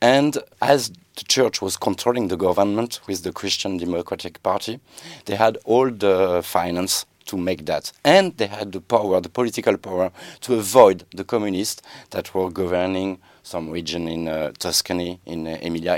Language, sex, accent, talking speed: English, male, French, 165 wpm